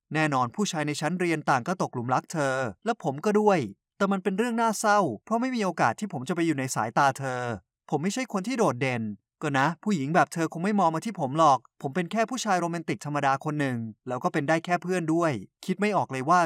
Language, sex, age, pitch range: Thai, male, 20-39, 140-185 Hz